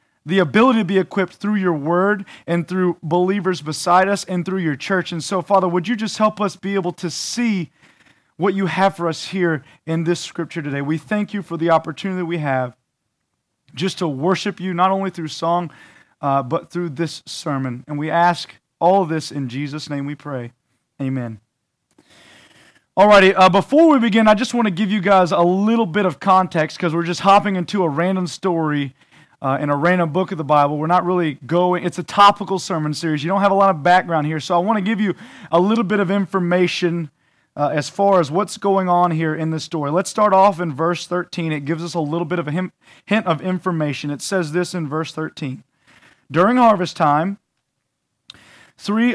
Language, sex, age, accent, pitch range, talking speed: English, male, 30-49, American, 155-190 Hz, 210 wpm